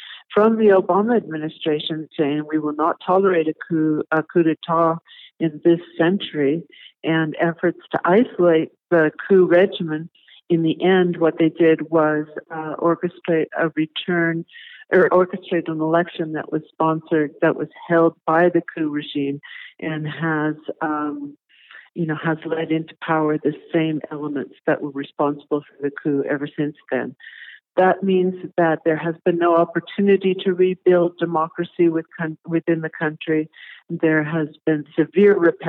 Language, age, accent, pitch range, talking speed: English, 50-69, American, 155-170 Hz, 150 wpm